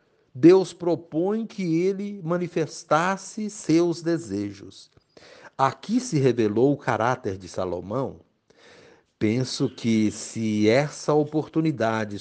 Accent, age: Brazilian, 60-79